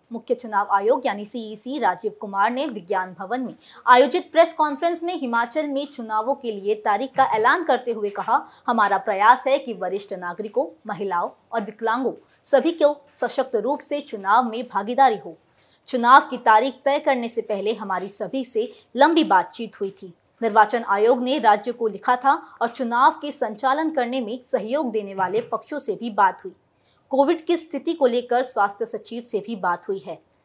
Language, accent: Hindi, native